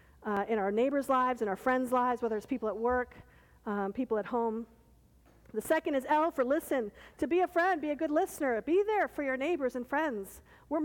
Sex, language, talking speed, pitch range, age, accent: female, English, 220 wpm, 215-315 Hz, 50-69, American